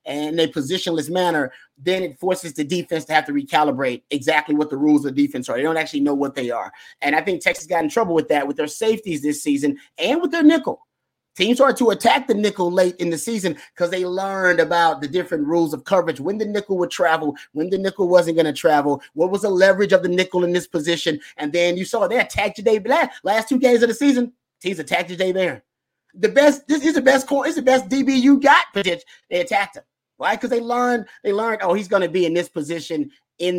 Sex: male